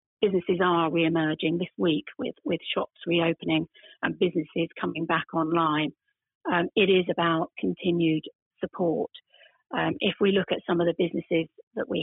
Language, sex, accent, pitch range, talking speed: English, female, British, 165-190 Hz, 155 wpm